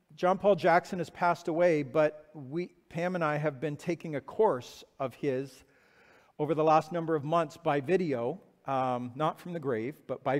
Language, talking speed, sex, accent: English, 190 wpm, male, American